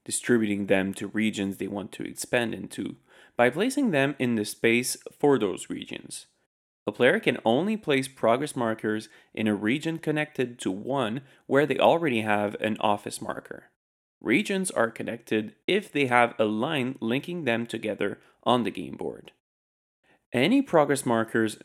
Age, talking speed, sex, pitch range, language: 20-39, 155 wpm, male, 105-140 Hz, English